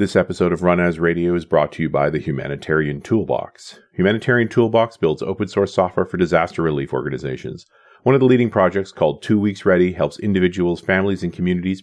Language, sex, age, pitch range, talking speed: English, male, 40-59, 85-115 Hz, 190 wpm